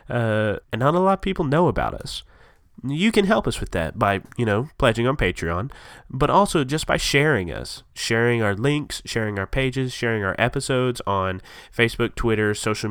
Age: 30-49